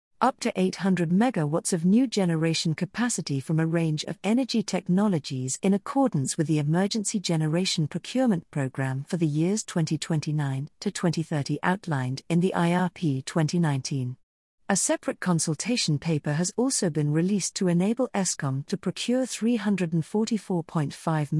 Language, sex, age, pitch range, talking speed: English, female, 50-69, 160-215 Hz, 130 wpm